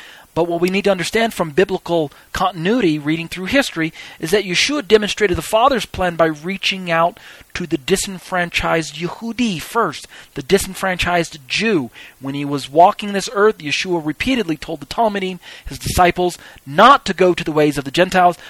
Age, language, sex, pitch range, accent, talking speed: 40-59, English, male, 140-195 Hz, American, 170 wpm